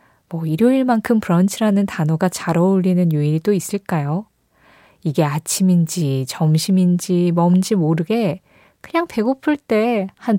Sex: female